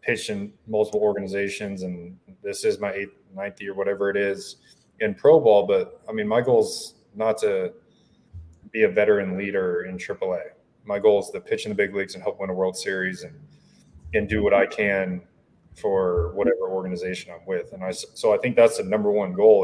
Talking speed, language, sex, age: 205 wpm, English, male, 20-39